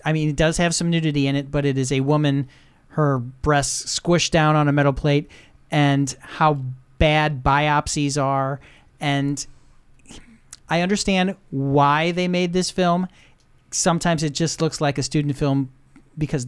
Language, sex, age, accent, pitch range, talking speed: English, male, 40-59, American, 130-155 Hz, 160 wpm